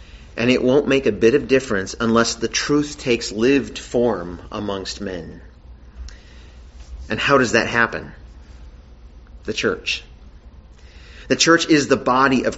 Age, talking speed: 40-59, 140 wpm